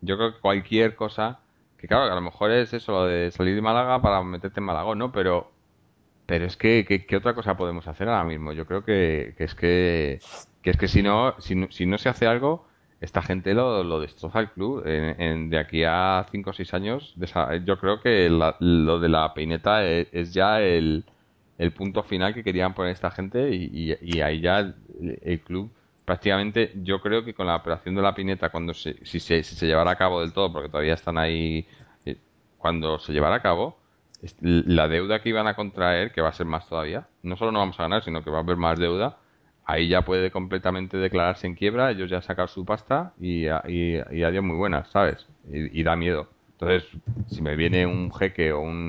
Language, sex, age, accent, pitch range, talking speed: Spanish, male, 30-49, Spanish, 80-100 Hz, 220 wpm